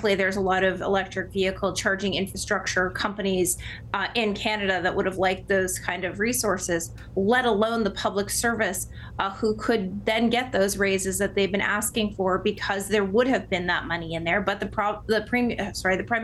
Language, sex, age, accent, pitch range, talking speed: English, female, 30-49, American, 190-225 Hz, 195 wpm